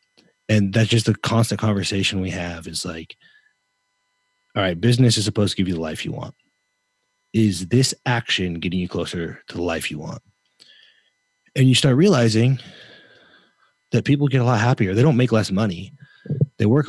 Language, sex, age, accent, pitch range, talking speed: English, male, 30-49, American, 95-115 Hz, 180 wpm